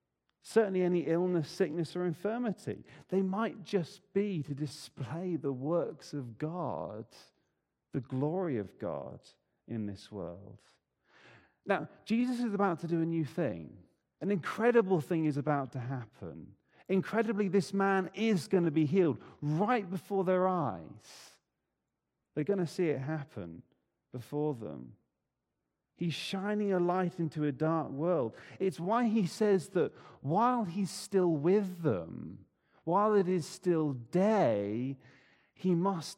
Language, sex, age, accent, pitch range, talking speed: English, male, 40-59, British, 140-190 Hz, 140 wpm